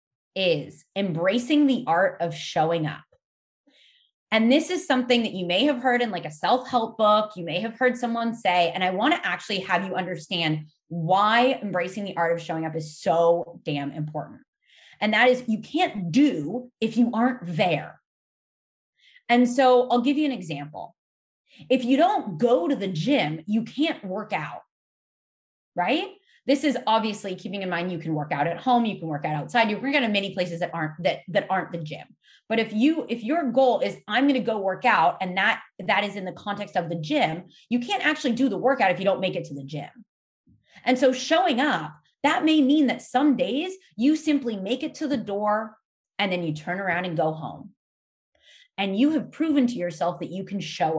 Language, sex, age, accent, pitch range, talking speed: English, female, 20-39, American, 175-260 Hz, 205 wpm